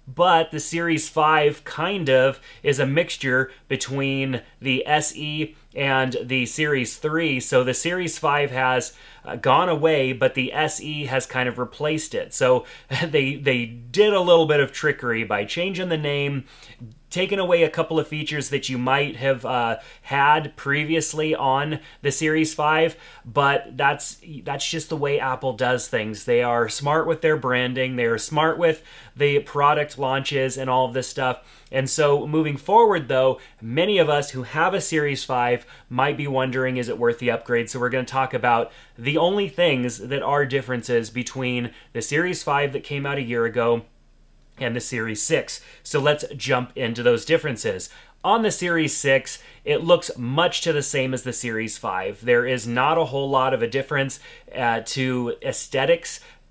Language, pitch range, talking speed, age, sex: English, 125-155 Hz, 175 wpm, 30-49, male